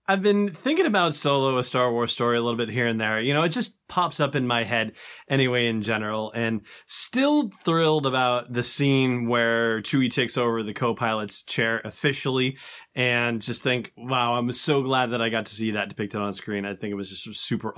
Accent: American